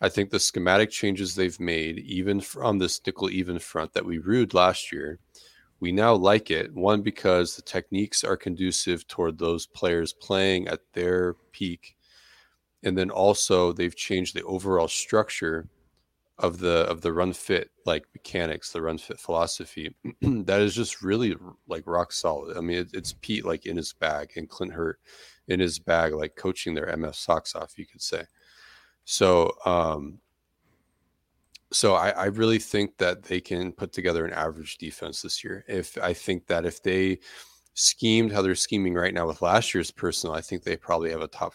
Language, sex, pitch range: English, male, 85-100 Hz